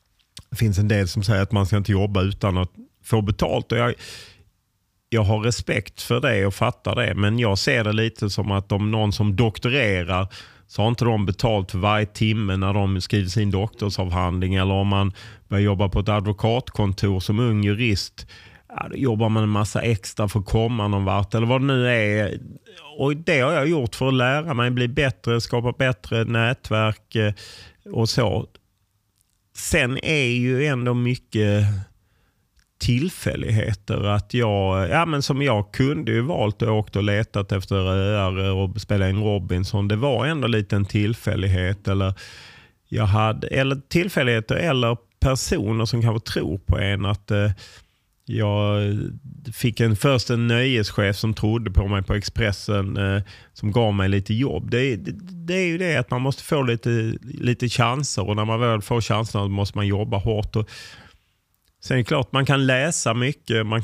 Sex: male